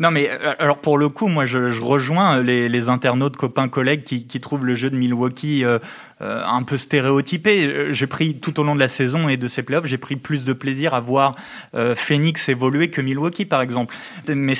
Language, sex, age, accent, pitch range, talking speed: French, male, 20-39, French, 130-160 Hz, 220 wpm